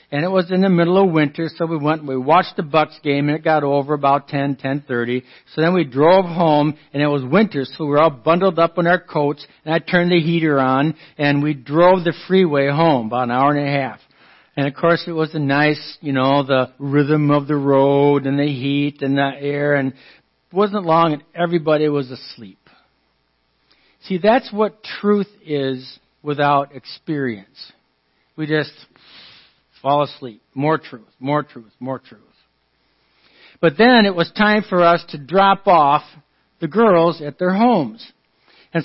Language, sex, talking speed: English, male, 185 wpm